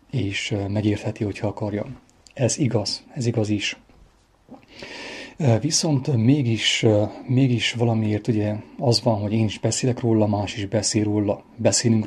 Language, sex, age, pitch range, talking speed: English, male, 30-49, 105-120 Hz, 135 wpm